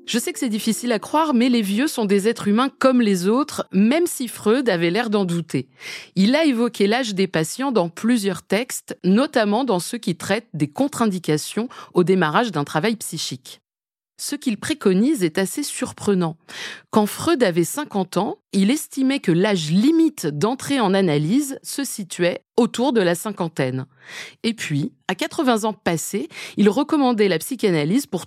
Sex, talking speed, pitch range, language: female, 170 wpm, 175-235 Hz, French